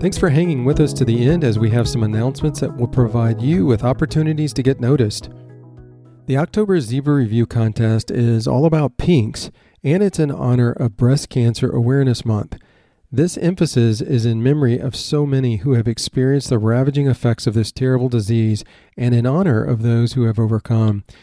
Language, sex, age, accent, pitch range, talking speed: English, male, 40-59, American, 115-140 Hz, 185 wpm